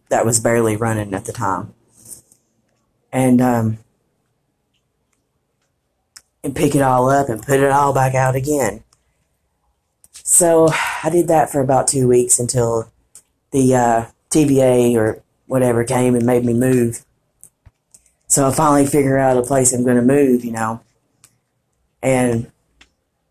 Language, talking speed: English, 135 wpm